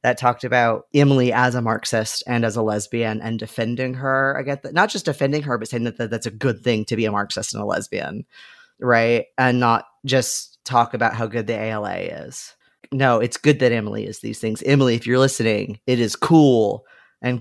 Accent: American